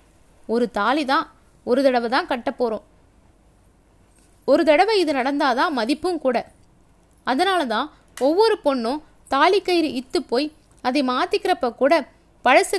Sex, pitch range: female, 255-345 Hz